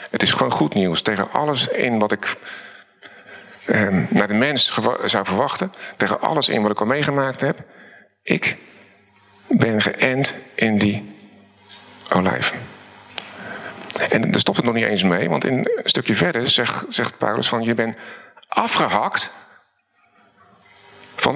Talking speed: 140 wpm